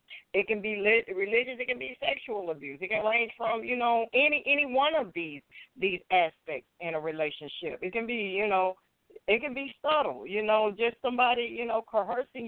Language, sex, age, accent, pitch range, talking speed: English, female, 50-69, American, 190-245 Hz, 200 wpm